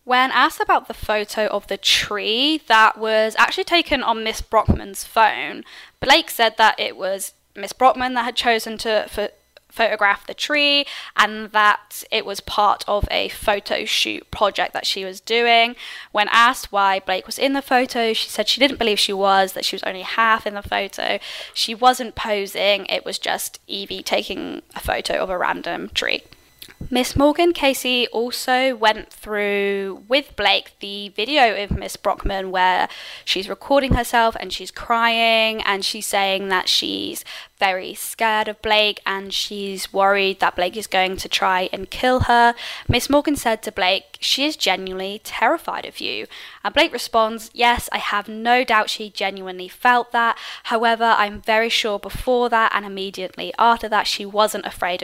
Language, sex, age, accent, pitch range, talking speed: English, female, 10-29, British, 195-240 Hz, 170 wpm